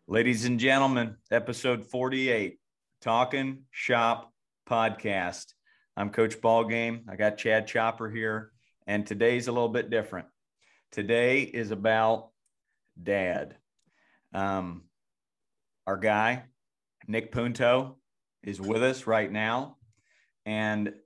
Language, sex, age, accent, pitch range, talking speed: English, male, 40-59, American, 105-125 Hz, 105 wpm